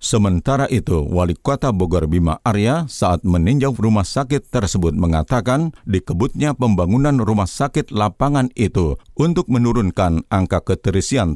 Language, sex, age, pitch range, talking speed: Indonesian, male, 50-69, 90-125 Hz, 115 wpm